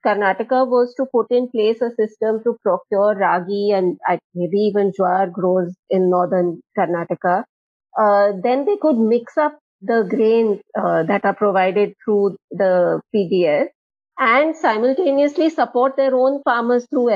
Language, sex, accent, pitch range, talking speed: English, female, Indian, 180-235 Hz, 145 wpm